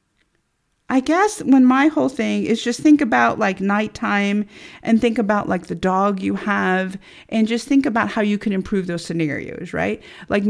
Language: English